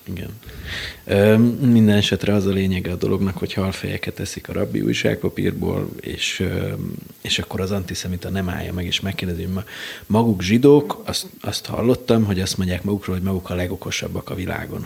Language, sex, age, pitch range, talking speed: Hungarian, male, 30-49, 100-115 Hz, 160 wpm